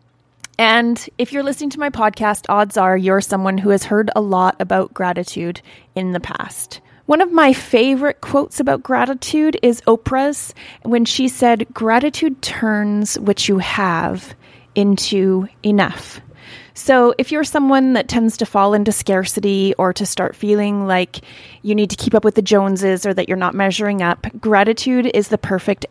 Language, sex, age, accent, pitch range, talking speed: English, female, 20-39, American, 195-240 Hz, 170 wpm